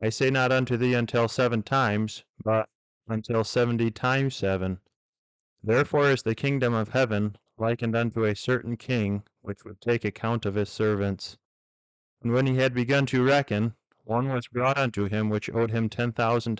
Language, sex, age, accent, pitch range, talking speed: English, male, 30-49, American, 105-125 Hz, 175 wpm